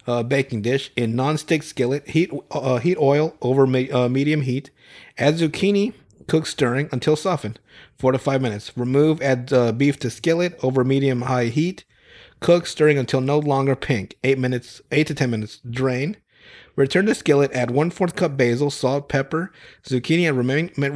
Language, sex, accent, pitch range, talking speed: English, male, American, 125-155 Hz, 175 wpm